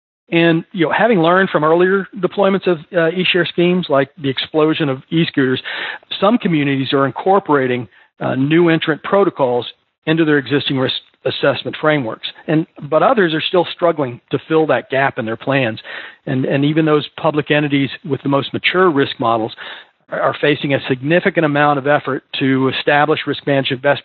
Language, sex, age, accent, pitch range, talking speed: English, male, 40-59, American, 135-170 Hz, 170 wpm